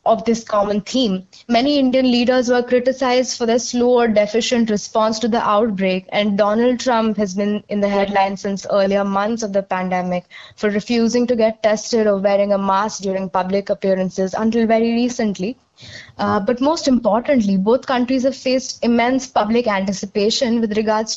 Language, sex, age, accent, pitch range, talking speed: English, female, 20-39, Indian, 205-250 Hz, 170 wpm